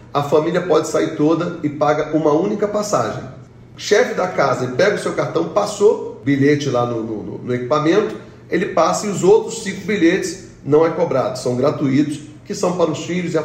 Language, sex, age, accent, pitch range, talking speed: Portuguese, male, 40-59, Brazilian, 135-165 Hz, 190 wpm